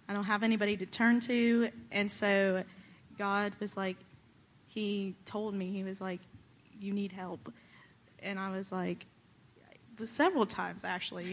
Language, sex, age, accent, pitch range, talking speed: English, female, 20-39, American, 190-220 Hz, 150 wpm